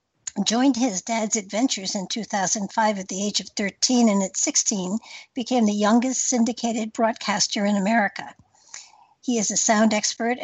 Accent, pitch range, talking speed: American, 205-245 Hz, 150 wpm